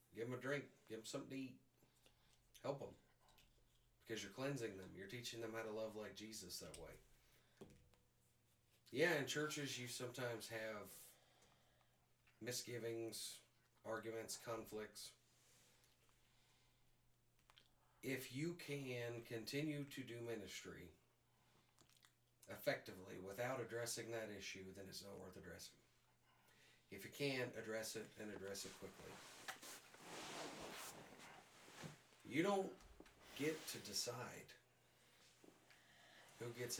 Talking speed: 110 wpm